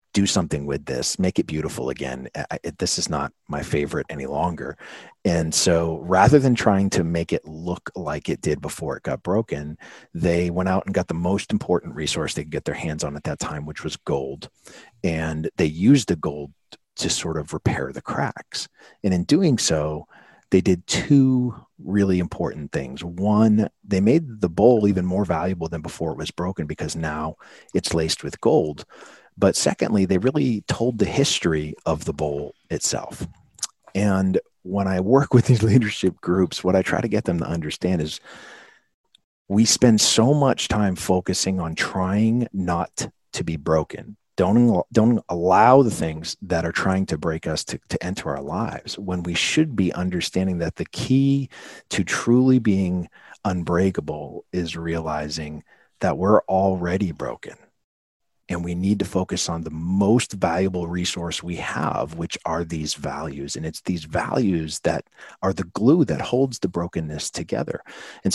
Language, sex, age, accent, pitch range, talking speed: English, male, 40-59, American, 80-100 Hz, 170 wpm